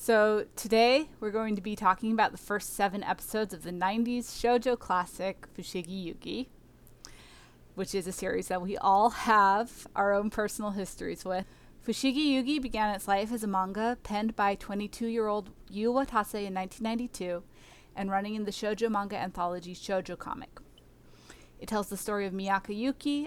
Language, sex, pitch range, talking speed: English, female, 190-240 Hz, 160 wpm